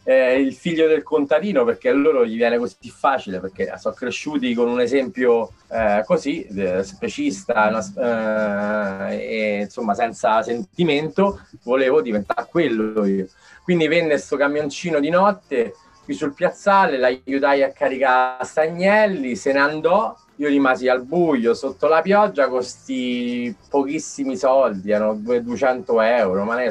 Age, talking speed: 30-49, 135 wpm